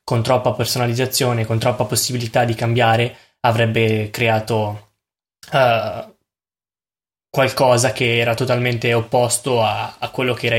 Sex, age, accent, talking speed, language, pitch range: male, 10-29, native, 115 wpm, Italian, 110-125 Hz